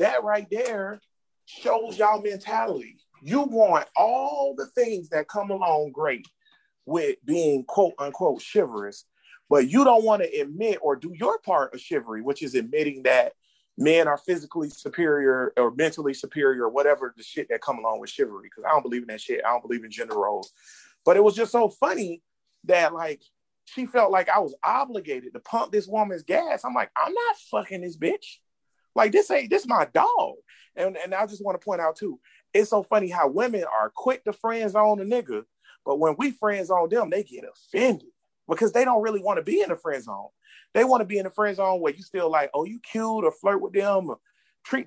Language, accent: English, American